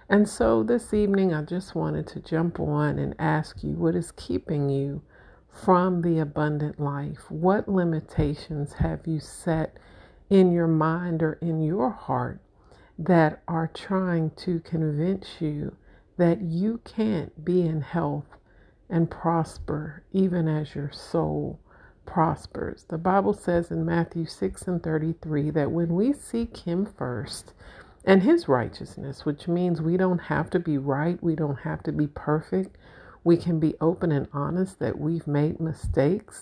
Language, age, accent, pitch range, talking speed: English, 50-69, American, 150-185 Hz, 155 wpm